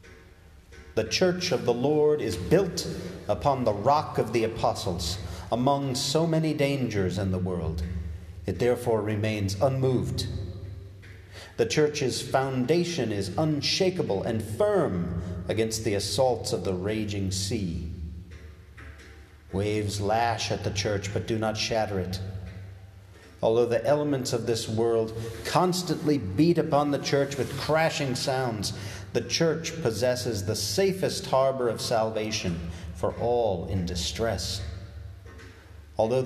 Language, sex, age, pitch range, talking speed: English, male, 40-59, 95-130 Hz, 125 wpm